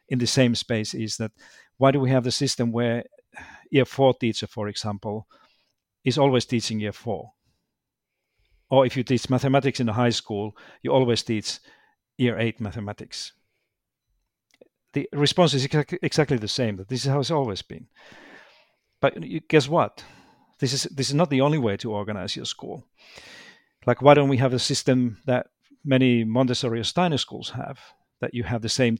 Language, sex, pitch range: English, male, 110-135 Hz